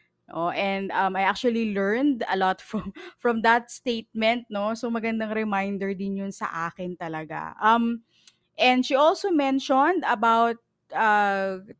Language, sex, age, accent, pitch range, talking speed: Filipino, female, 20-39, native, 200-265 Hz, 140 wpm